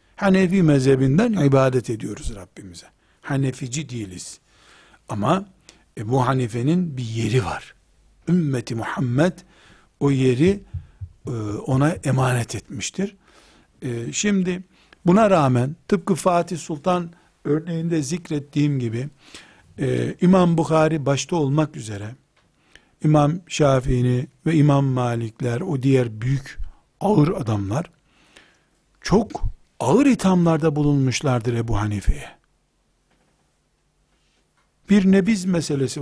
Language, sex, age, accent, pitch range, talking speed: Turkish, male, 60-79, native, 130-175 Hz, 90 wpm